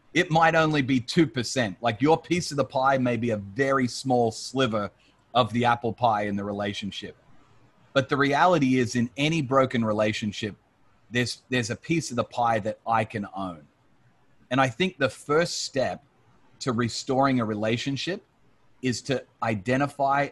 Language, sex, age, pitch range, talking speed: English, male, 30-49, 115-135 Hz, 165 wpm